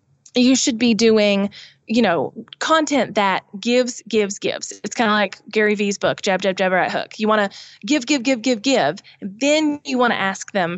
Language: English